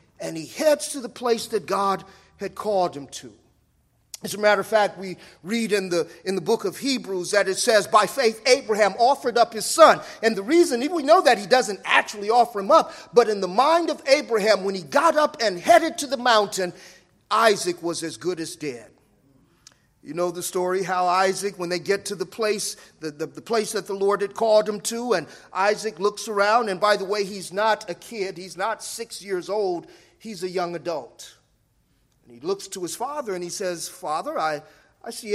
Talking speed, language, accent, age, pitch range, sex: 215 wpm, English, American, 40-59, 190-245 Hz, male